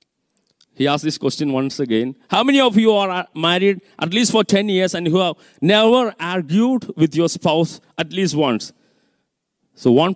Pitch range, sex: 145-205 Hz, male